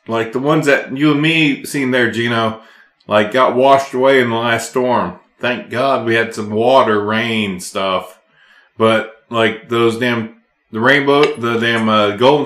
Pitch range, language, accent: 110-135 Hz, English, American